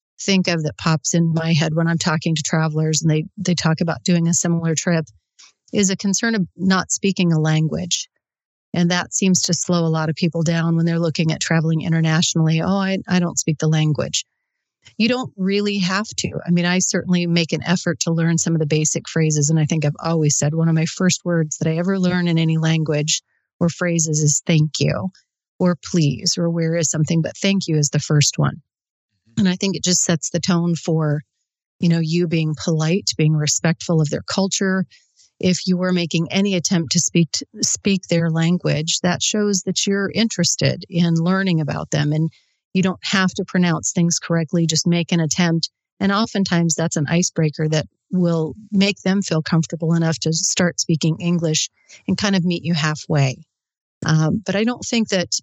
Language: English